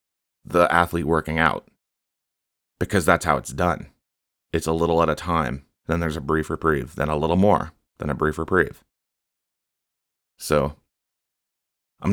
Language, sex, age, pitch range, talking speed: English, male, 30-49, 75-95 Hz, 150 wpm